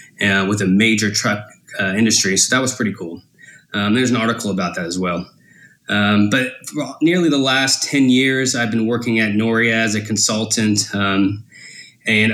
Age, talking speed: 20-39, 185 wpm